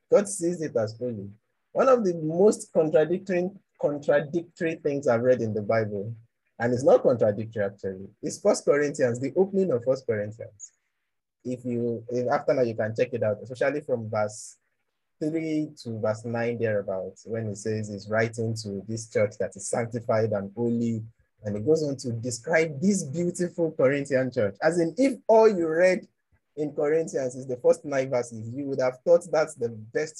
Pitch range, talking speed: 115-160 Hz, 185 wpm